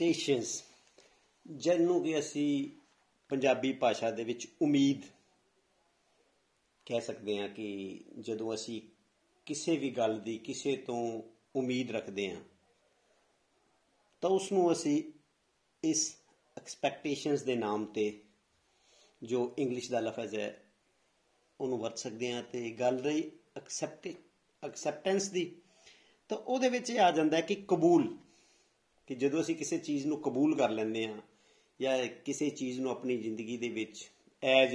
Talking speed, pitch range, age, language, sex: 130 wpm, 115-180 Hz, 50-69, Punjabi, male